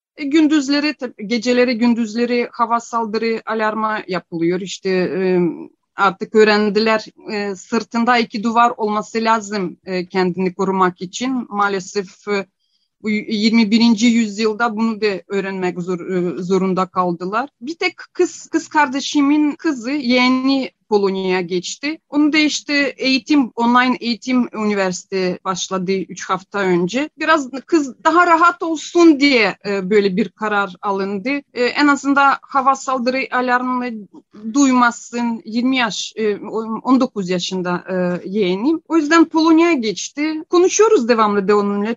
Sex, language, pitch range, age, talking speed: female, Turkish, 200-260 Hz, 30-49, 110 wpm